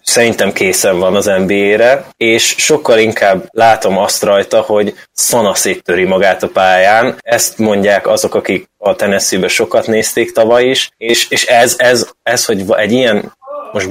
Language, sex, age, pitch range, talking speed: Hungarian, male, 20-39, 100-125 Hz, 155 wpm